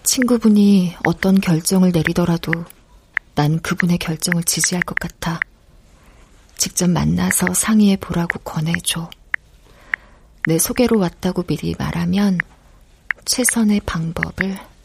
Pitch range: 160-195 Hz